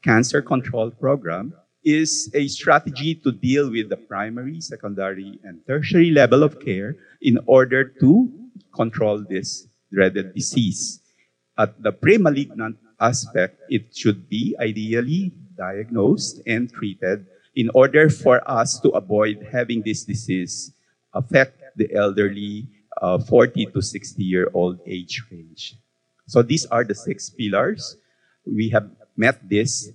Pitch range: 100-140 Hz